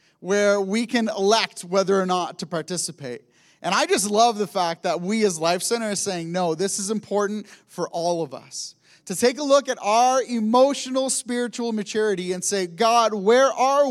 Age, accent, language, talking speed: 30-49, American, English, 190 wpm